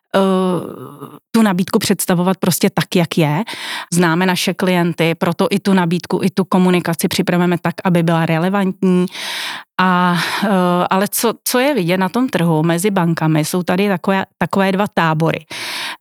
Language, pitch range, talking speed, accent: Czech, 175-205 Hz, 145 wpm, native